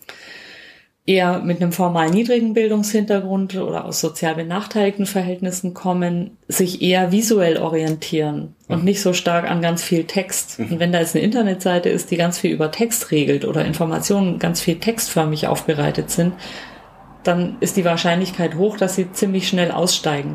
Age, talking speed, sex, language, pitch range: 30-49, 160 wpm, female, German, 165-195 Hz